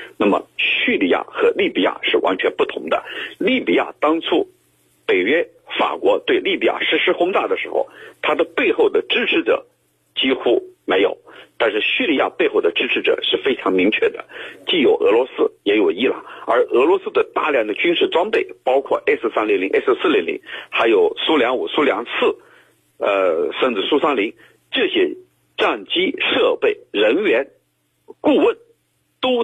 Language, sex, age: Chinese, male, 50-69